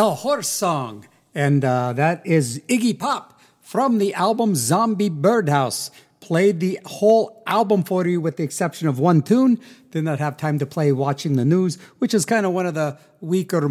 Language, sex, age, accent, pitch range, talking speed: English, male, 50-69, American, 145-220 Hz, 190 wpm